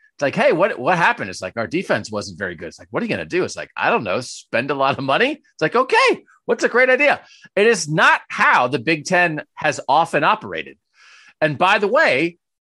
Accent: American